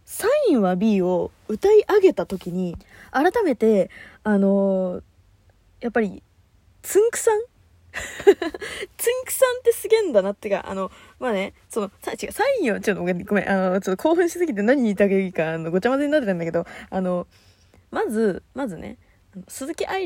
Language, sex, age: Japanese, female, 20-39